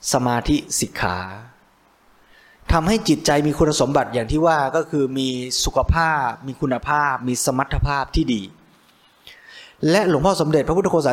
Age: 20-39